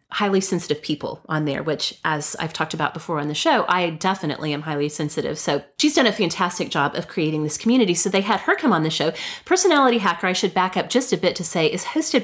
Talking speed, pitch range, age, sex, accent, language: 245 wpm, 165-235 Hz, 30-49, female, American, English